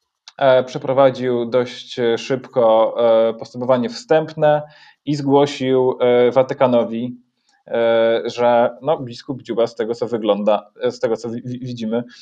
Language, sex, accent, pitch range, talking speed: Polish, male, native, 120-140 Hz, 100 wpm